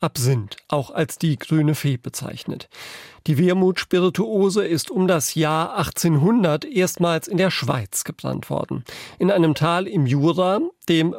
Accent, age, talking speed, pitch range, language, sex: German, 40-59, 140 wpm, 145-185 Hz, German, male